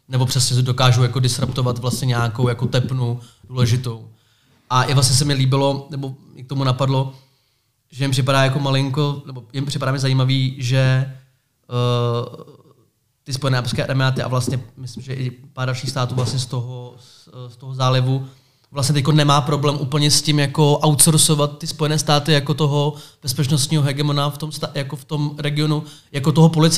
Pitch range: 125-145 Hz